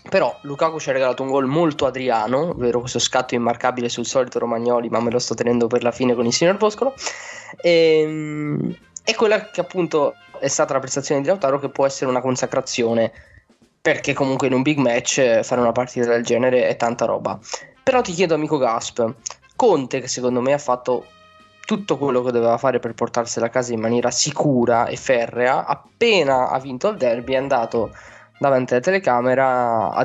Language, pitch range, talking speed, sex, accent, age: Italian, 120-150 Hz, 190 wpm, male, native, 10-29